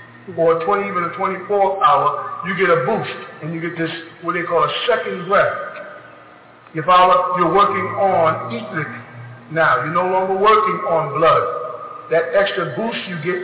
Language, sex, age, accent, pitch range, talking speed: English, male, 50-69, American, 165-220 Hz, 170 wpm